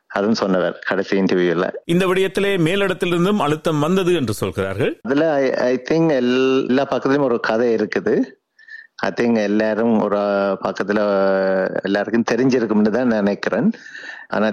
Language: Tamil